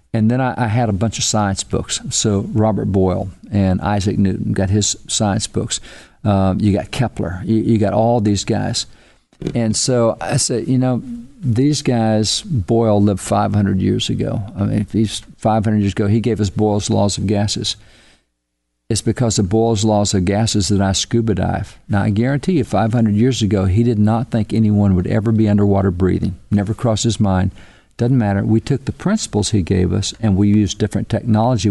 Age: 50-69